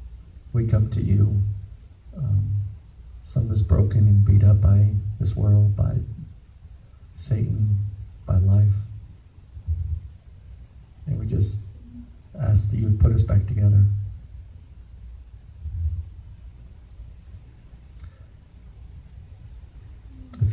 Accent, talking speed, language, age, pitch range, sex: American, 90 wpm, English, 50-69, 85-100 Hz, male